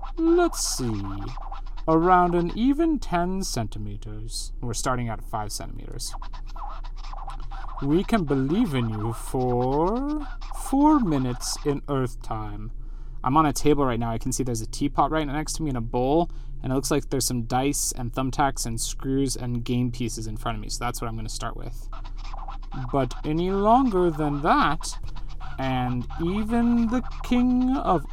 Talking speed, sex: 165 wpm, male